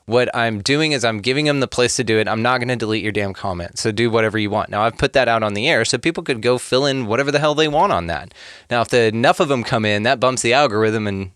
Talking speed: 305 wpm